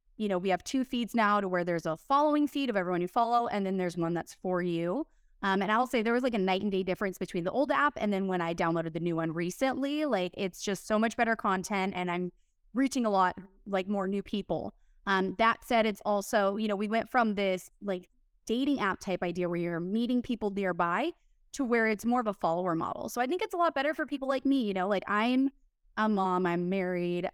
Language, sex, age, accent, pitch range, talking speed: English, female, 20-39, American, 185-240 Hz, 250 wpm